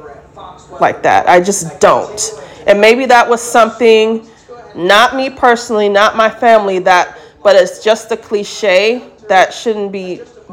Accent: American